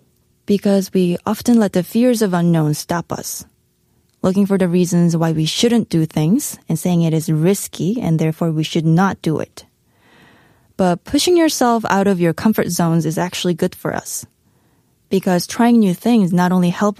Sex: female